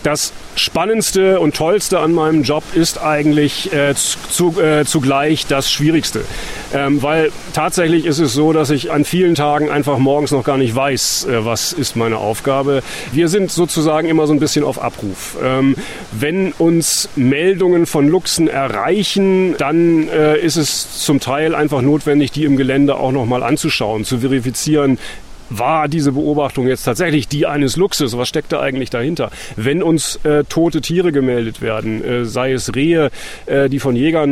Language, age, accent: German, 40-59, German